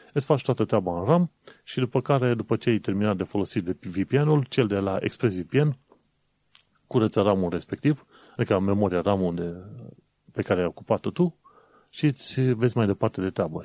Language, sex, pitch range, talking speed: Romanian, male, 100-130 Hz, 175 wpm